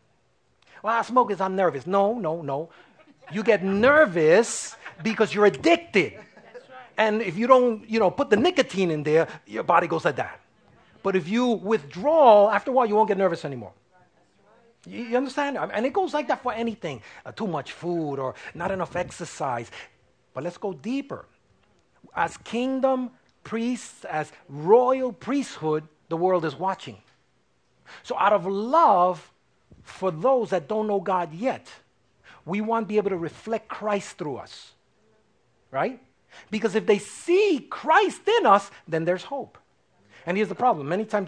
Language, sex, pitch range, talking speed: English, male, 170-235 Hz, 165 wpm